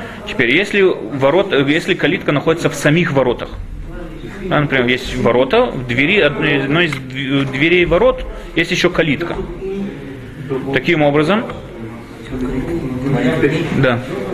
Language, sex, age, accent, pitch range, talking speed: Russian, male, 20-39, native, 130-165 Hz, 100 wpm